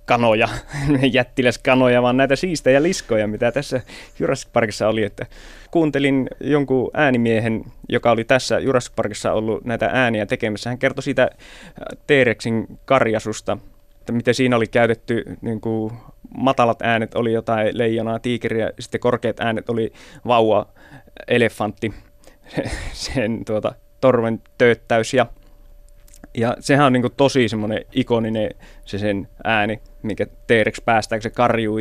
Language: Finnish